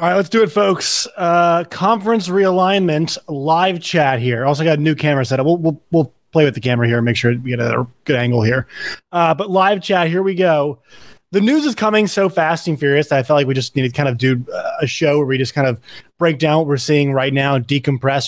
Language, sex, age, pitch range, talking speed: English, male, 20-39, 135-175 Hz, 245 wpm